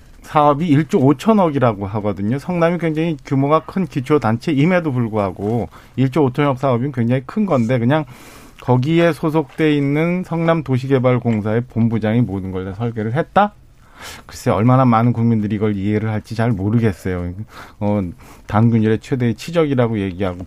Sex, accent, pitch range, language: male, native, 105-140 Hz, Korean